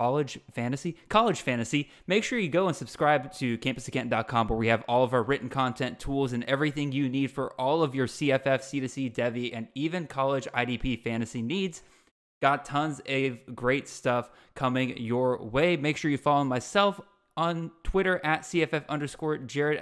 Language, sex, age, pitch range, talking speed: English, male, 10-29, 125-155 Hz, 175 wpm